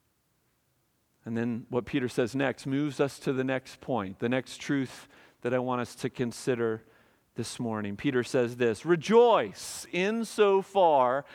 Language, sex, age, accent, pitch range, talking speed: English, male, 40-59, American, 125-185 Hz, 150 wpm